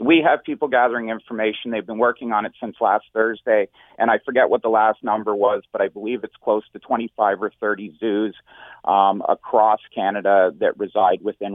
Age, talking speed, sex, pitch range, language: 40-59, 190 wpm, male, 105-130 Hz, English